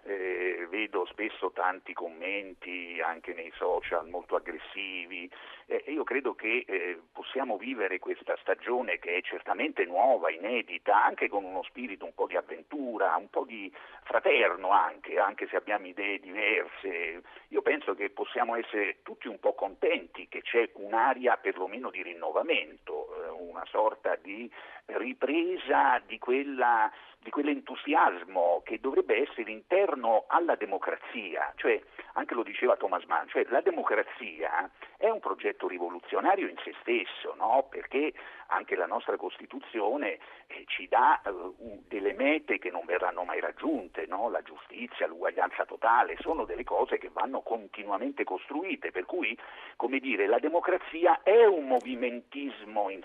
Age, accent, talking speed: 50-69, native, 145 wpm